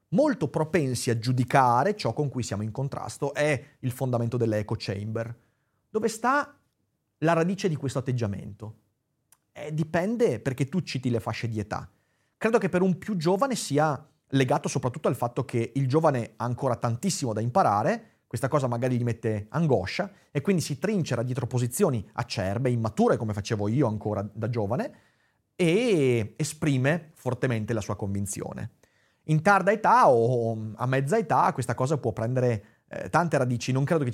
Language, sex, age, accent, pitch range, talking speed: Italian, male, 30-49, native, 115-155 Hz, 165 wpm